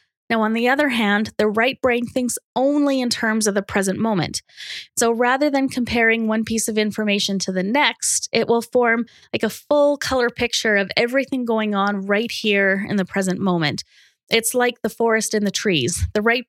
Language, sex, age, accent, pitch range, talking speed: English, female, 20-39, American, 205-250 Hz, 195 wpm